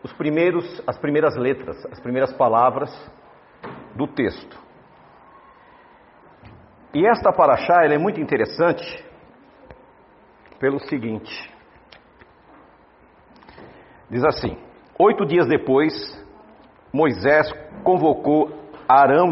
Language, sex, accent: Portuguese, male, Brazilian